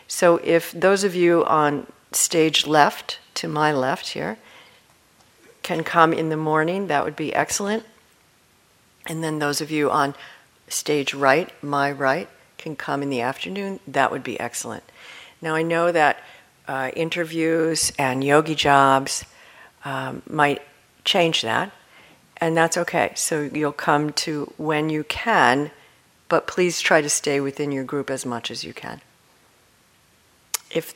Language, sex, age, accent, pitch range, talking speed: English, female, 50-69, American, 145-175 Hz, 150 wpm